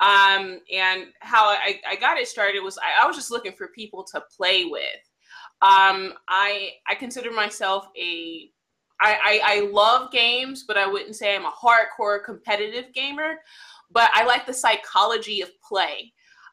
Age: 20-39